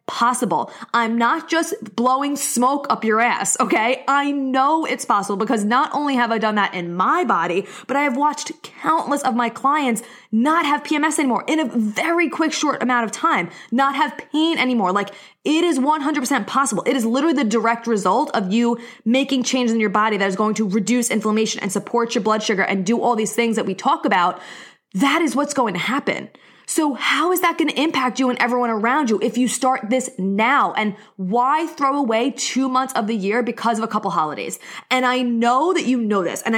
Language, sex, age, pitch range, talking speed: English, female, 20-39, 220-280 Hz, 215 wpm